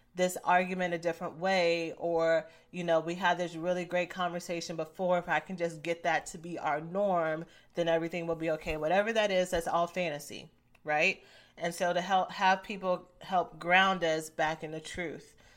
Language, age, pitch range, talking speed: English, 30-49, 165-185 Hz, 195 wpm